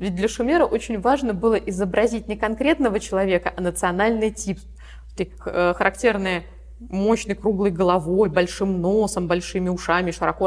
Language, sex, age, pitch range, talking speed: Russian, female, 20-39, 175-230 Hz, 125 wpm